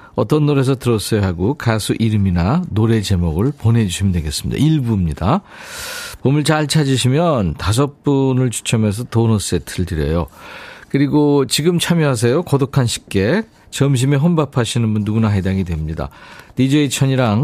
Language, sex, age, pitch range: Korean, male, 50-69, 95-140 Hz